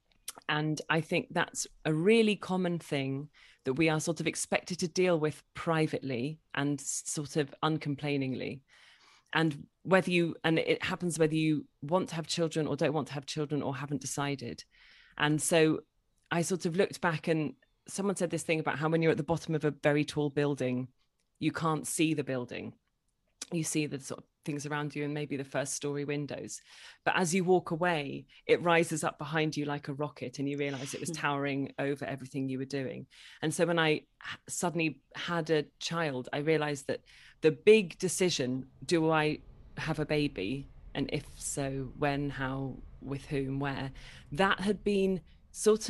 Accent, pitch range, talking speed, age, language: British, 140-165 Hz, 185 wpm, 30-49, English